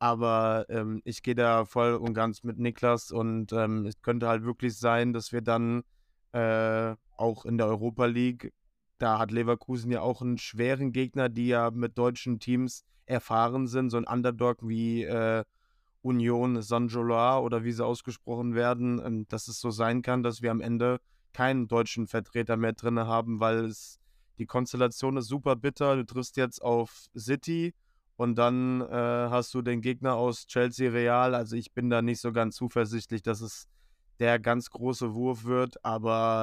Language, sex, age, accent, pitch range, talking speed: German, male, 20-39, German, 115-125 Hz, 175 wpm